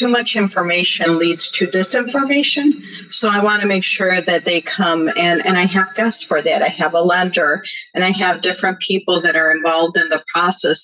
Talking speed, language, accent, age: 200 wpm, English, American, 50-69